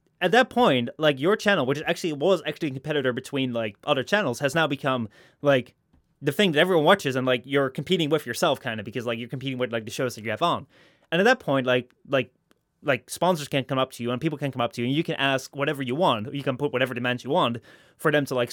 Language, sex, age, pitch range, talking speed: English, male, 20-39, 125-160 Hz, 270 wpm